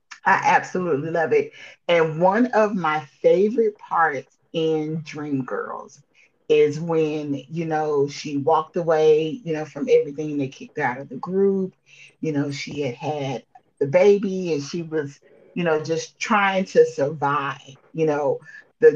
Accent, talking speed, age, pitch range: American, 150 wpm, 30-49, 145-180 Hz